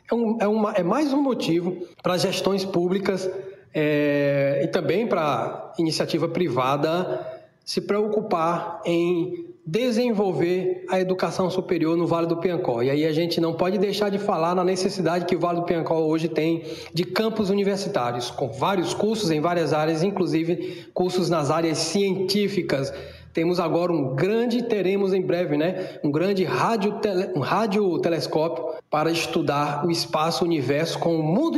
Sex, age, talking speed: male, 20-39, 150 wpm